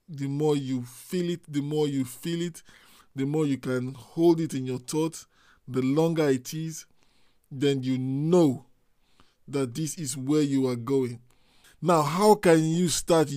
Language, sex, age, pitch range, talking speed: English, male, 20-39, 130-160 Hz, 170 wpm